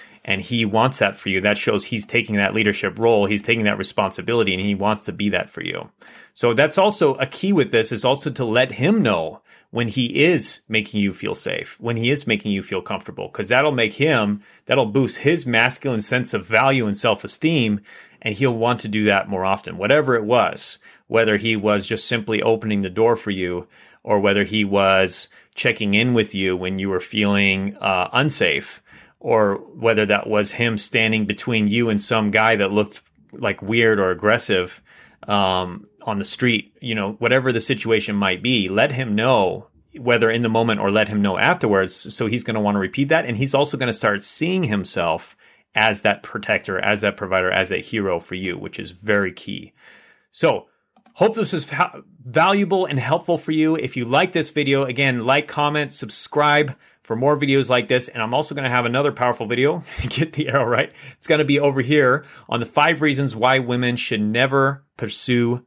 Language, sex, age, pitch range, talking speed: English, male, 30-49, 105-135 Hz, 200 wpm